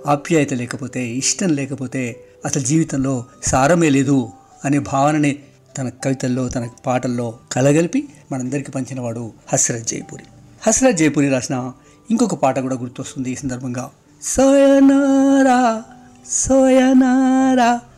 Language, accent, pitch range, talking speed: Telugu, native, 130-175 Hz, 105 wpm